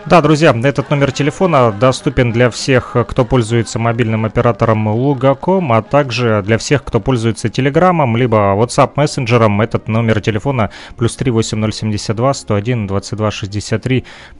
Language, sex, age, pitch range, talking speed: Russian, male, 30-49, 110-140 Hz, 115 wpm